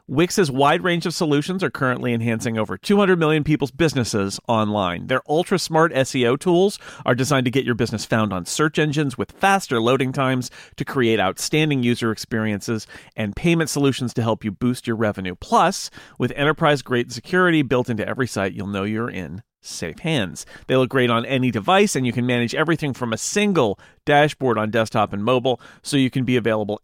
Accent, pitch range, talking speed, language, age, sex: American, 115-165 Hz, 190 wpm, English, 40-59, male